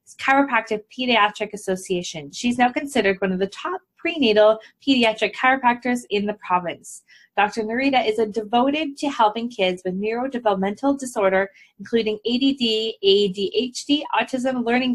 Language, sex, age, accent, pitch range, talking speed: English, female, 20-39, American, 200-245 Hz, 125 wpm